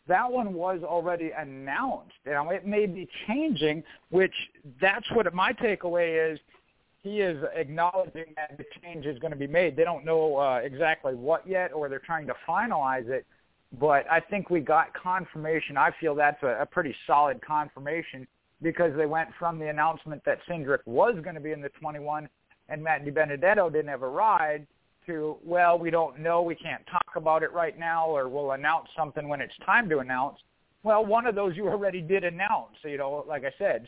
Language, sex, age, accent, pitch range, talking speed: English, male, 50-69, American, 150-175 Hz, 195 wpm